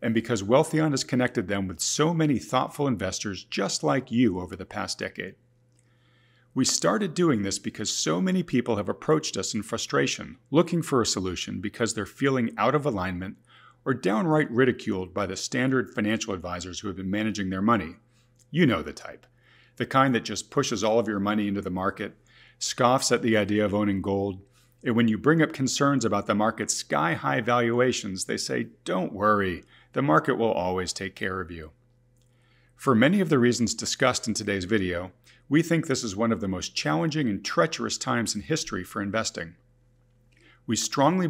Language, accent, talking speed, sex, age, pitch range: English, American, 185 wpm, male, 40-59, 100-125 Hz